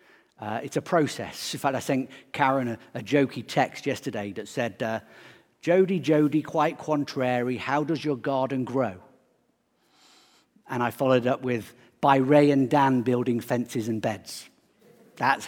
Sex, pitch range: male, 130-190 Hz